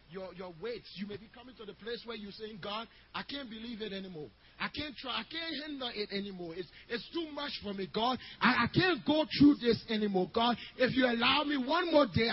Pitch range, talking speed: 165-255 Hz, 240 wpm